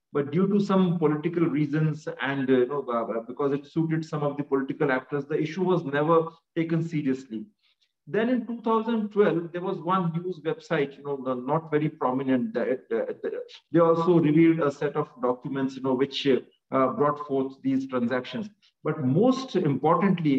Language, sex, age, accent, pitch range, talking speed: English, male, 40-59, Indian, 140-175 Hz, 180 wpm